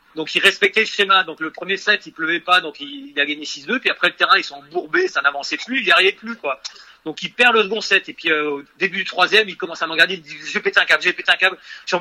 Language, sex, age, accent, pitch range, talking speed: French, male, 40-59, French, 145-205 Hz, 305 wpm